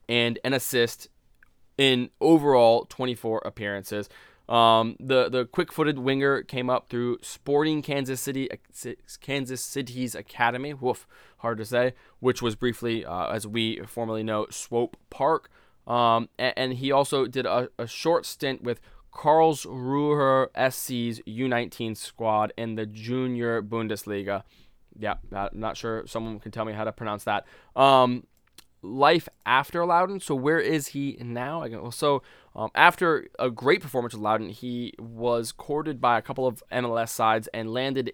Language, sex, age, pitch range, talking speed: English, male, 20-39, 110-135 Hz, 150 wpm